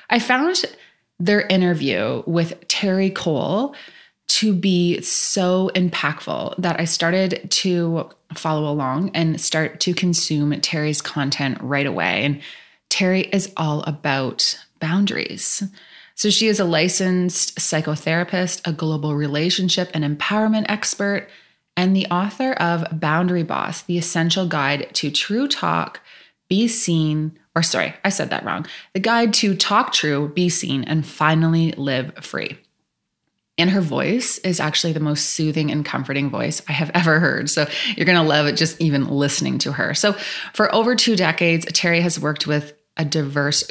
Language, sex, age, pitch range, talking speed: English, female, 20-39, 155-190 Hz, 150 wpm